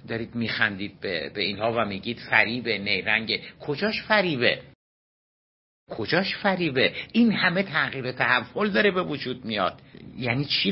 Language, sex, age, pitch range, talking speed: Persian, male, 60-79, 115-160 Hz, 130 wpm